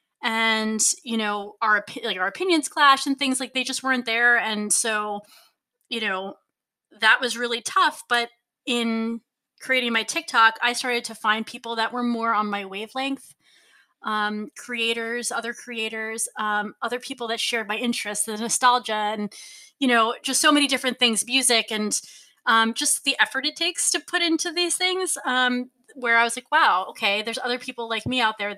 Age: 20-39